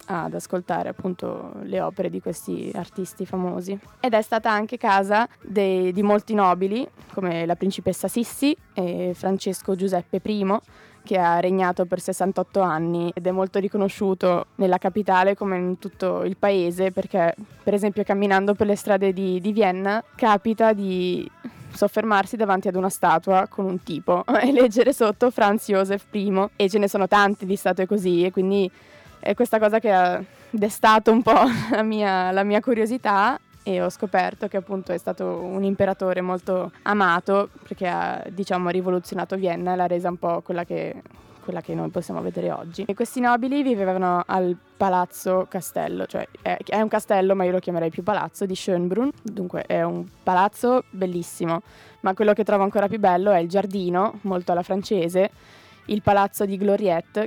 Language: Italian